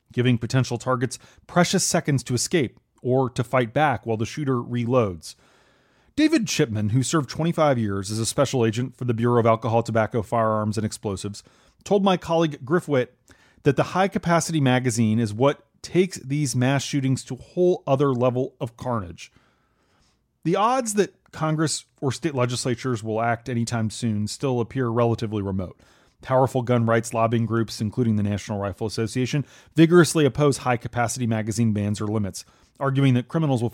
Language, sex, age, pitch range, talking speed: English, male, 30-49, 115-145 Hz, 160 wpm